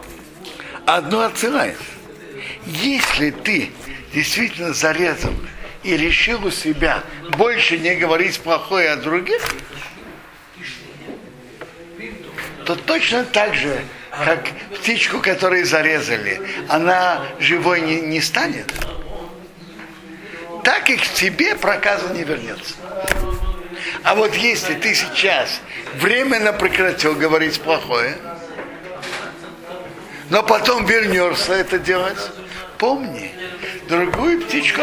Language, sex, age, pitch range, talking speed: Russian, male, 60-79, 165-230 Hz, 90 wpm